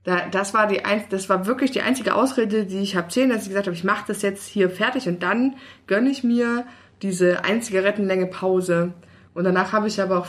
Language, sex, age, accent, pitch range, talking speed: German, female, 20-39, German, 175-215 Hz, 215 wpm